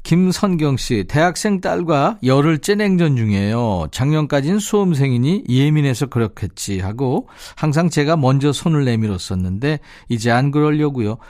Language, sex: Korean, male